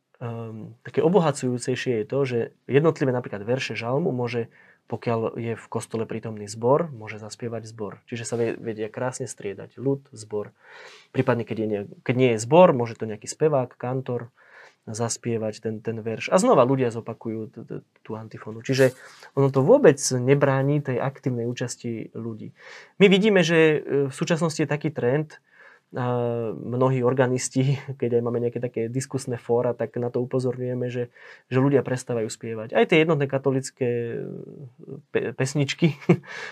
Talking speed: 150 wpm